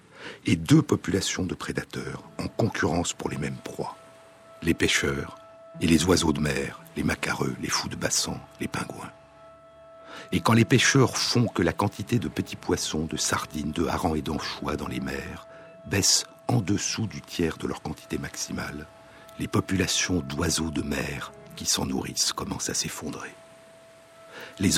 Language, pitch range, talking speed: French, 80-120 Hz, 160 wpm